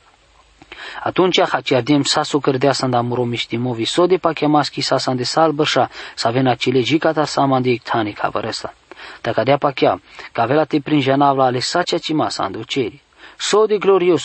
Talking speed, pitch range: 160 wpm, 130-165 Hz